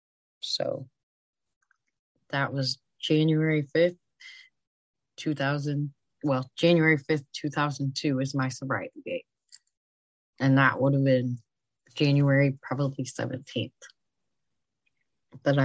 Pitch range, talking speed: 135-160 Hz, 90 wpm